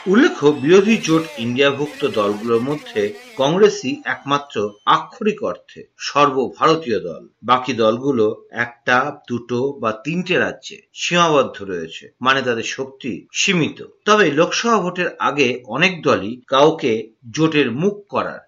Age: 50-69